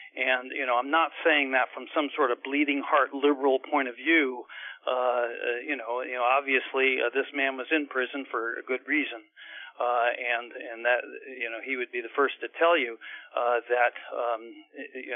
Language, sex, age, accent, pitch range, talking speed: English, male, 50-69, American, 135-205 Hz, 200 wpm